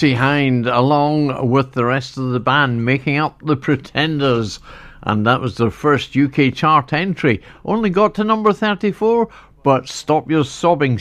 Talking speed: 160 wpm